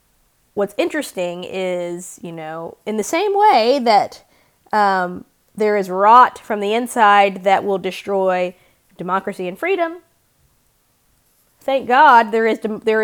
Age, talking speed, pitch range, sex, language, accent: 20-39, 120 wpm, 190-270 Hz, female, English, American